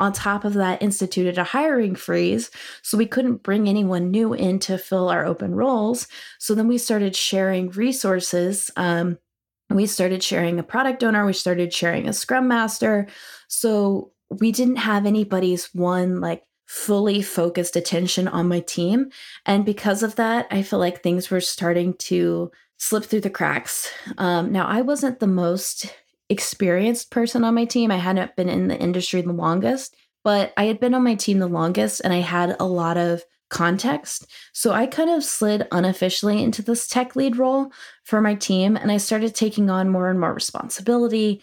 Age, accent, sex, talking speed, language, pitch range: 20-39, American, female, 180 wpm, English, 180-230 Hz